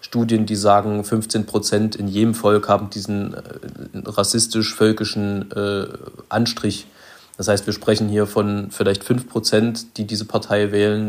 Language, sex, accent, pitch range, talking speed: German, male, German, 105-125 Hz, 140 wpm